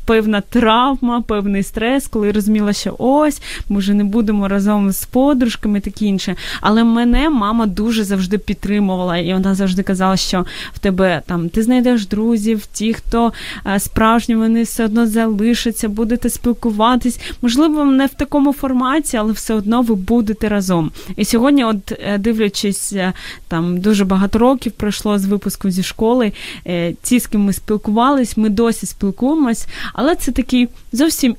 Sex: female